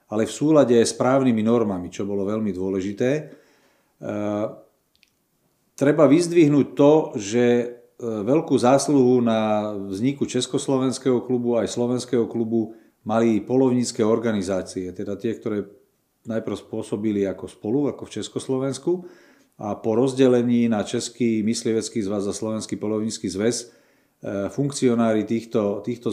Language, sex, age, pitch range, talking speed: Slovak, male, 40-59, 110-130 Hz, 115 wpm